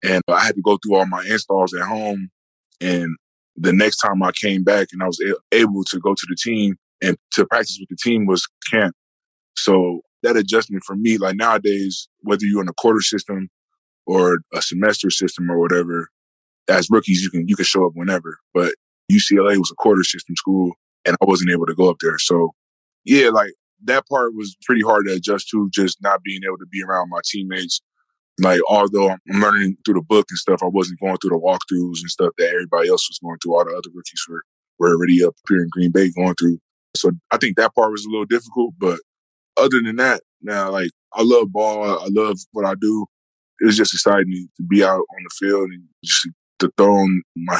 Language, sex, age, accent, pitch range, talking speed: English, male, 20-39, American, 90-100 Hz, 220 wpm